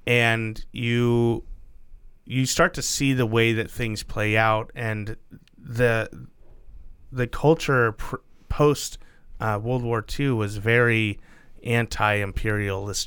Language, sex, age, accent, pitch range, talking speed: English, male, 30-49, American, 105-125 Hz, 110 wpm